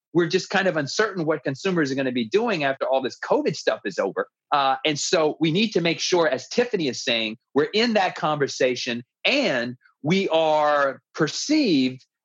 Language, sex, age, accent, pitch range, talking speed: English, male, 30-49, American, 130-195 Hz, 190 wpm